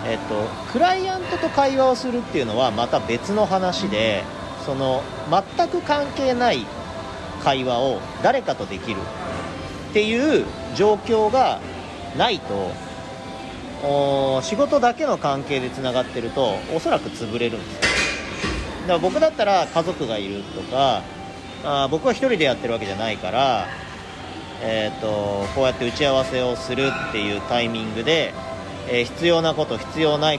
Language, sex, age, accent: Japanese, male, 40-59, native